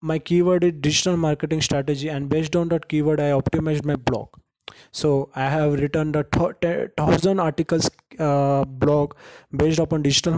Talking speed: 170 wpm